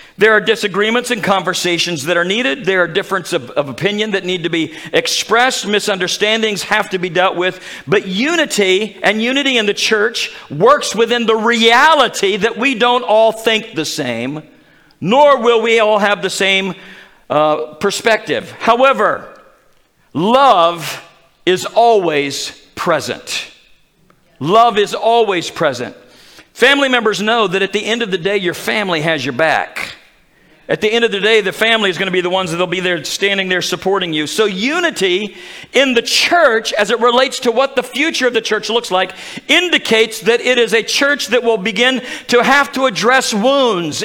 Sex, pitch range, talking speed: male, 190-245 Hz, 175 wpm